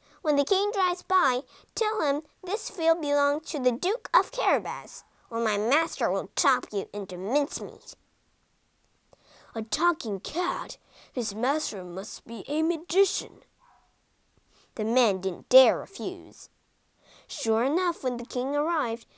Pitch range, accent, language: 225-335 Hz, American, Chinese